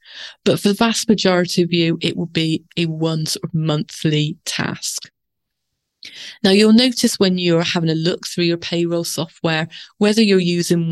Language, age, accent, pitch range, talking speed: English, 30-49, British, 160-190 Hz, 160 wpm